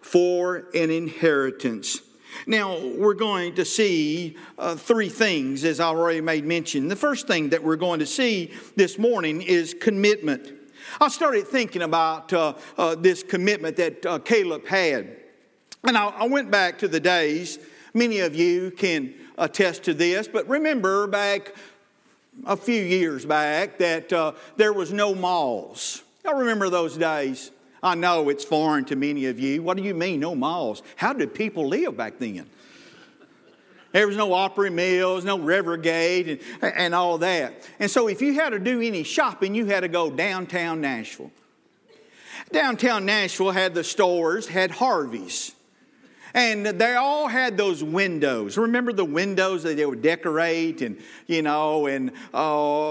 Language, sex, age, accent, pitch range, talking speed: English, male, 50-69, American, 160-210 Hz, 160 wpm